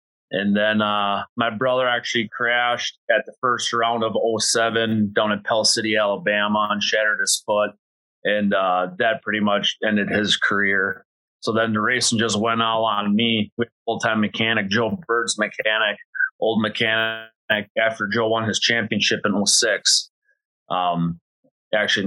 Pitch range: 105-120 Hz